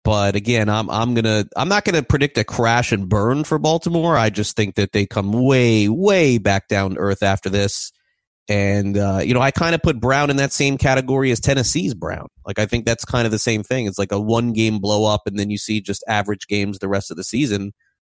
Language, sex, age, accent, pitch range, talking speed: English, male, 30-49, American, 100-145 Hz, 245 wpm